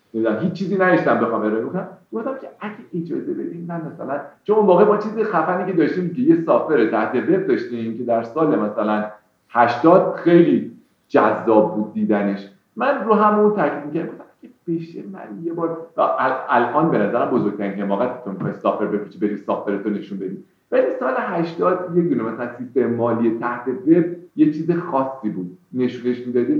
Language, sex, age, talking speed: Persian, male, 50-69, 185 wpm